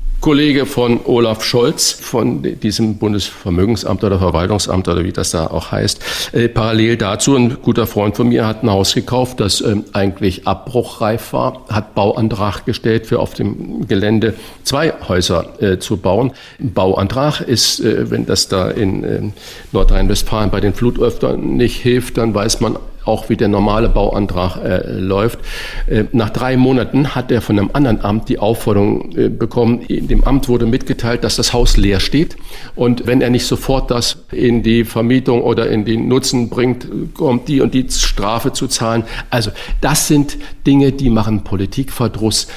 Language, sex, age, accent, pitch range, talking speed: German, male, 50-69, German, 105-125 Hz, 170 wpm